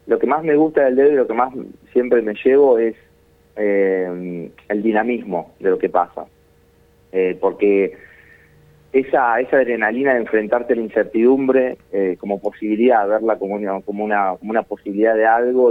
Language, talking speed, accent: Spanish, 170 wpm, Argentinian